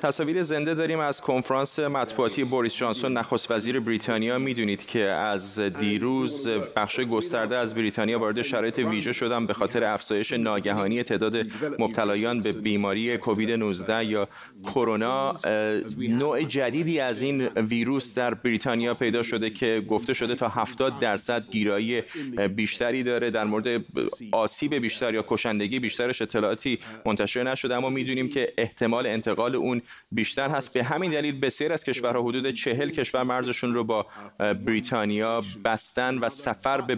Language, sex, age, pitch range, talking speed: Persian, male, 30-49, 110-130 Hz, 145 wpm